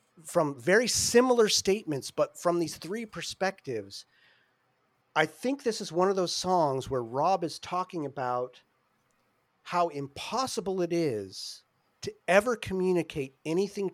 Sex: male